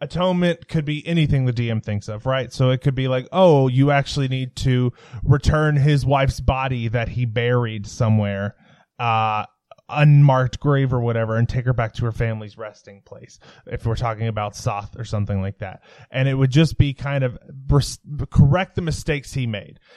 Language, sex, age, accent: English, male, 20-39, American